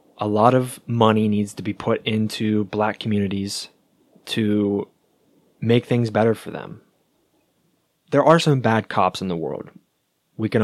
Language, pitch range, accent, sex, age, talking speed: English, 100-125 Hz, American, male, 20-39, 150 wpm